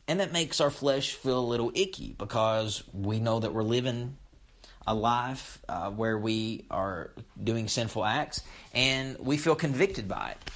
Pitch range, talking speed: 100-130 Hz, 170 wpm